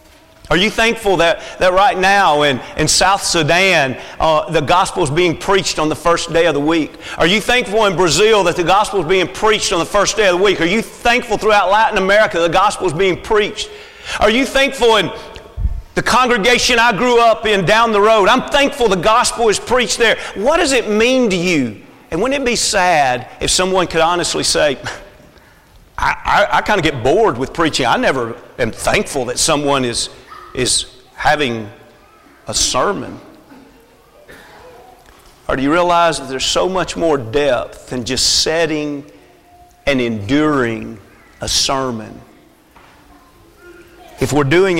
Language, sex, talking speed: English, male, 175 wpm